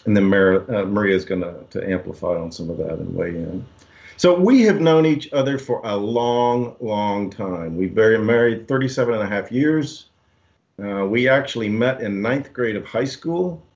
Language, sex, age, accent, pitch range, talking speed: English, male, 50-69, American, 95-135 Hz, 190 wpm